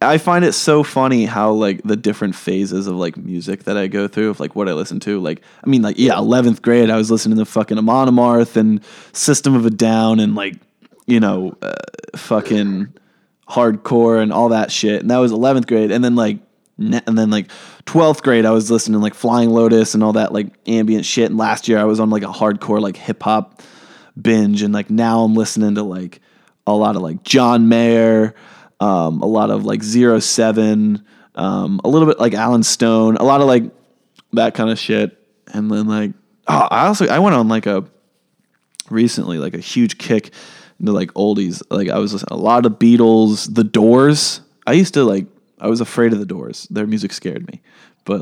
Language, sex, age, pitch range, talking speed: English, male, 20-39, 105-120 Hz, 210 wpm